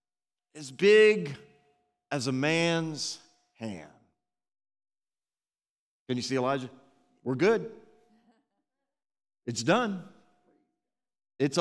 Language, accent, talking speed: English, American, 80 wpm